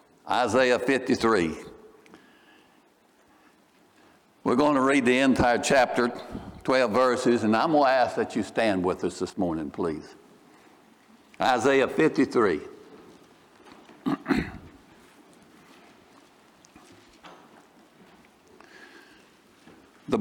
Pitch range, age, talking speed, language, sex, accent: 120-160 Hz, 60-79, 80 wpm, English, male, American